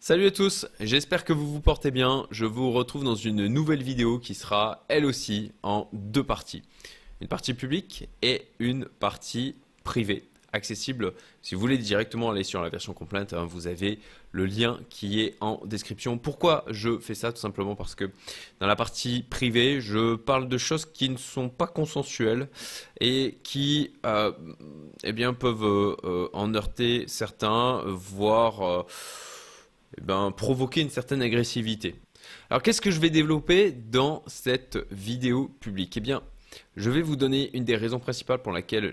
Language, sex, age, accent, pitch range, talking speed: French, male, 20-39, French, 105-135 Hz, 165 wpm